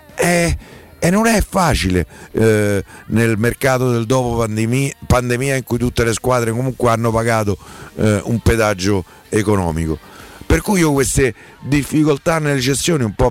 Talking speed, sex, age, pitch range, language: 140 wpm, male, 50-69, 100-125 Hz, Italian